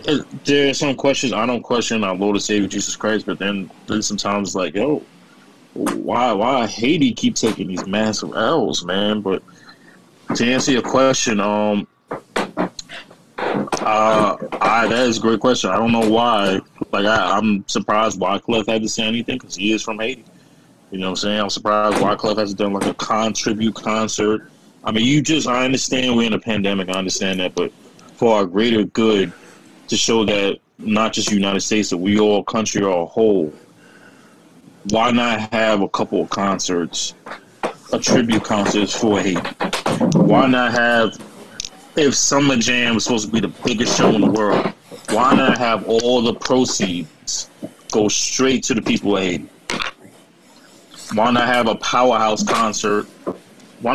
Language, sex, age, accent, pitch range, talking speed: English, male, 20-39, American, 100-120 Hz, 175 wpm